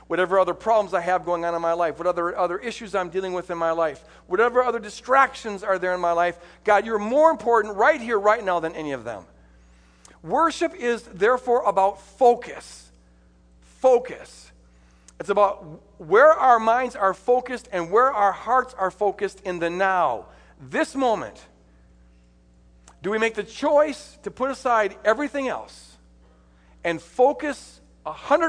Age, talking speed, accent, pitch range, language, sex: 50-69, 160 wpm, American, 155-245 Hz, English, male